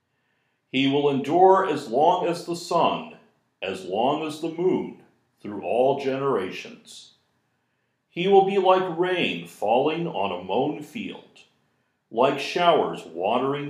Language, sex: English, male